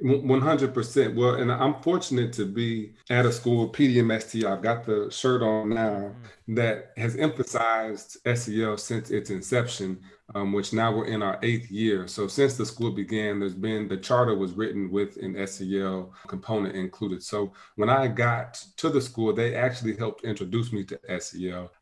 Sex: male